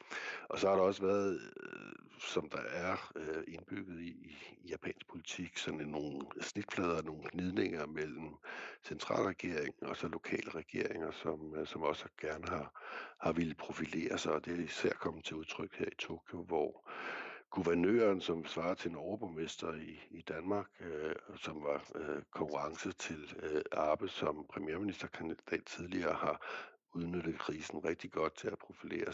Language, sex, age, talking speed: Danish, male, 60-79, 155 wpm